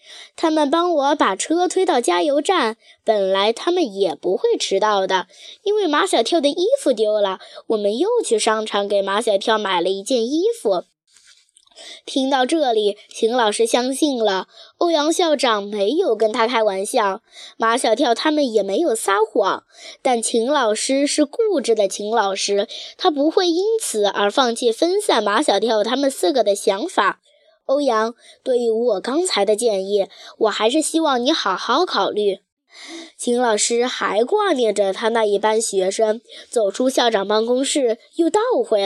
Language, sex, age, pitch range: Chinese, female, 10-29, 210-310 Hz